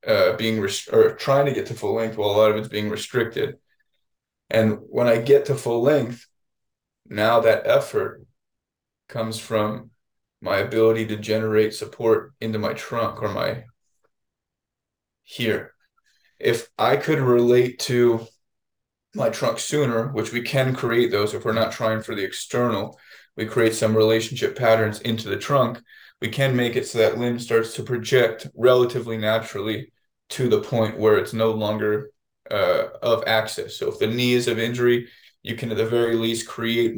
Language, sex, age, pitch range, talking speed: English, male, 20-39, 110-125 Hz, 165 wpm